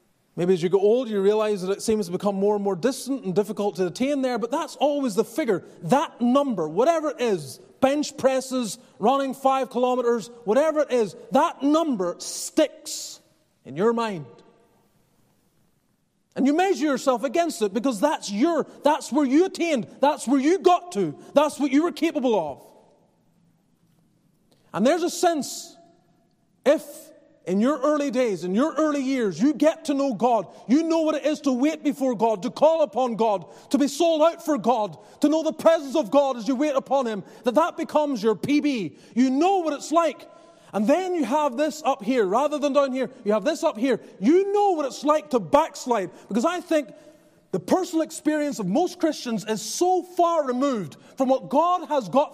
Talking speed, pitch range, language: 195 wpm, 235-310 Hz, English